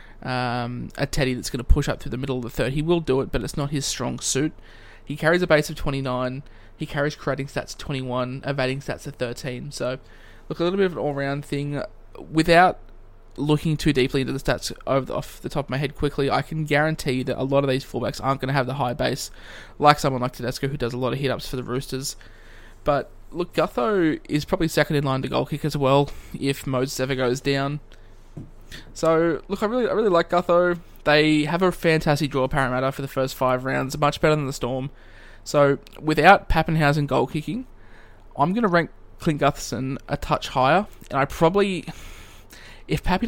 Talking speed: 215 wpm